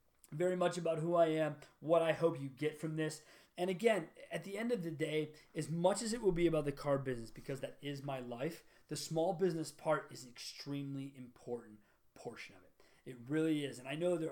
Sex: male